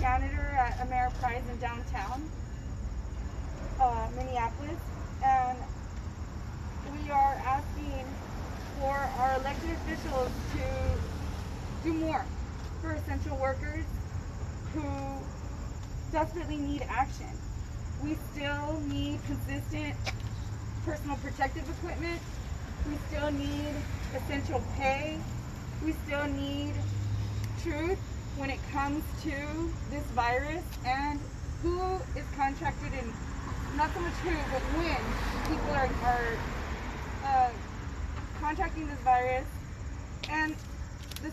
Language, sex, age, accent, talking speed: English, female, 20-39, American, 95 wpm